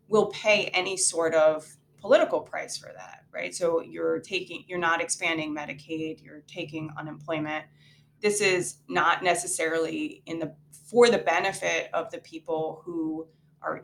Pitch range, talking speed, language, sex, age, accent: 155-200 Hz, 150 wpm, English, female, 20-39, American